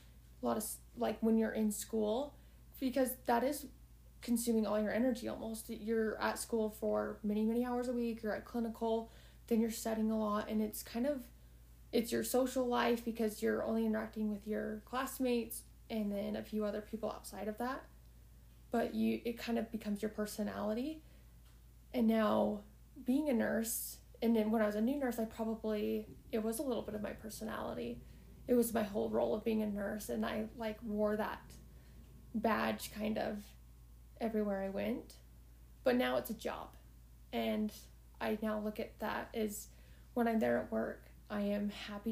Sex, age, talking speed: female, 20-39, 180 wpm